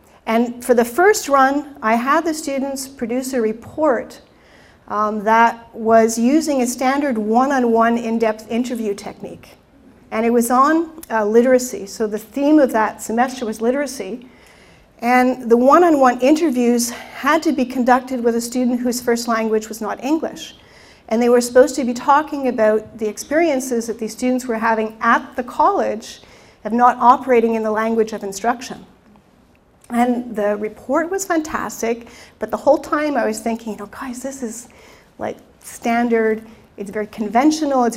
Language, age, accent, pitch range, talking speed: French, 40-59, American, 225-265 Hz, 160 wpm